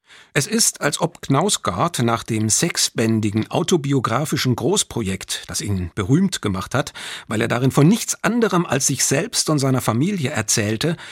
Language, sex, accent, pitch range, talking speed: German, male, German, 115-165 Hz, 150 wpm